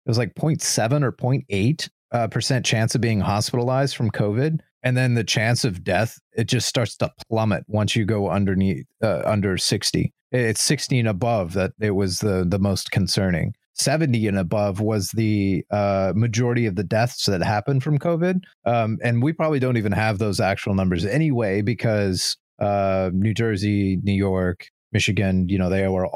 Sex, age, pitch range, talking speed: male, 30-49, 100-125 Hz, 180 wpm